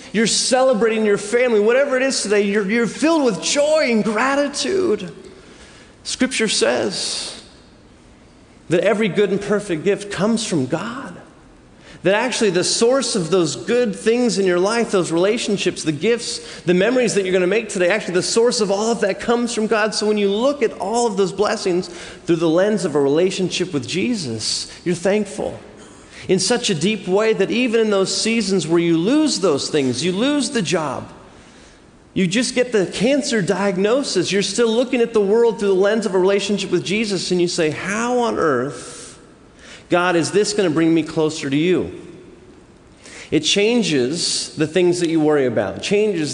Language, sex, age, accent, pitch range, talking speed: English, male, 30-49, American, 165-225 Hz, 185 wpm